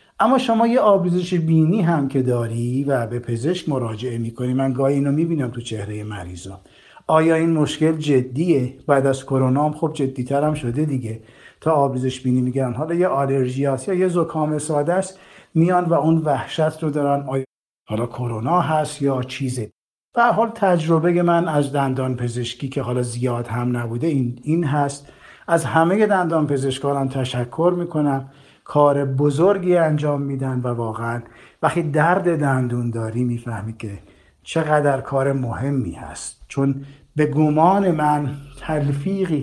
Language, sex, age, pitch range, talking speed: Persian, male, 50-69, 125-160 Hz, 145 wpm